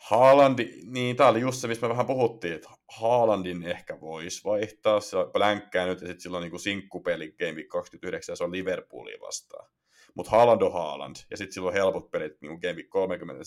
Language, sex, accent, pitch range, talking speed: Finnish, male, native, 90-135 Hz, 185 wpm